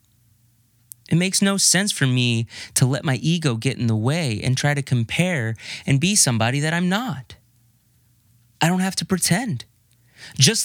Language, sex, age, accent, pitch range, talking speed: English, male, 30-49, American, 120-180 Hz, 170 wpm